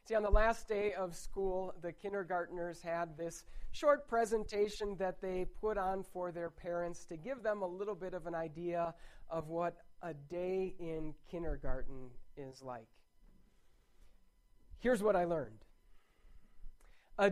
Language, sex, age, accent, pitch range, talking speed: English, male, 40-59, American, 165-200 Hz, 145 wpm